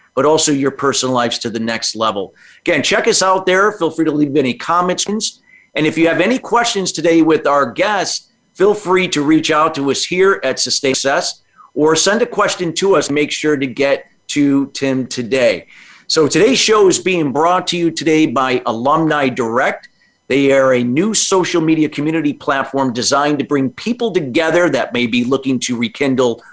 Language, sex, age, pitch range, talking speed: English, male, 50-69, 135-180 Hz, 190 wpm